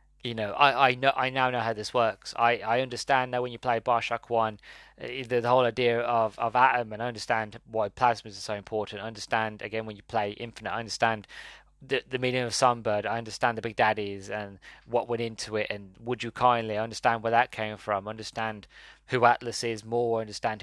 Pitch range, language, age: 105-130 Hz, English, 20-39